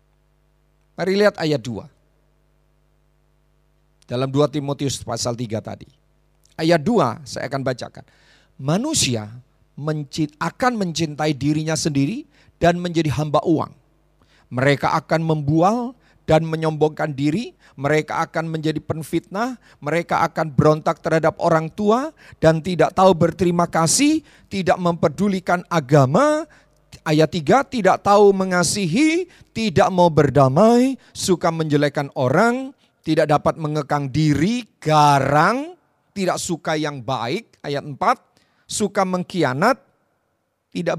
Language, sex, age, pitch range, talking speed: Indonesian, male, 40-59, 140-185 Hz, 110 wpm